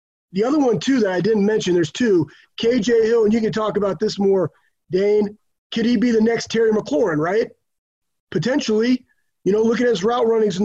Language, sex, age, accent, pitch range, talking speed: English, male, 30-49, American, 190-220 Hz, 210 wpm